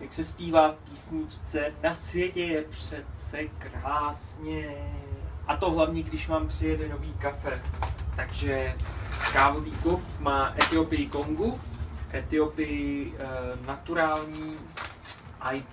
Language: Czech